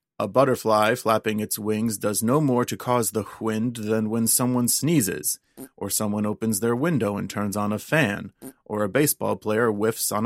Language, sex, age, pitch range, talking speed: English, male, 30-49, 105-125 Hz, 185 wpm